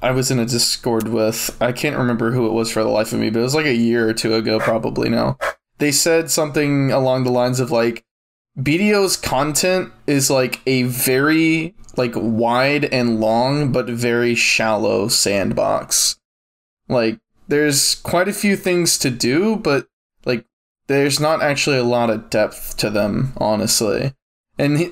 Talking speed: 170 wpm